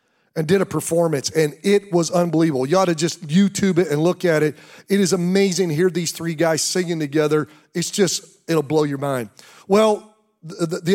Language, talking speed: English, 195 wpm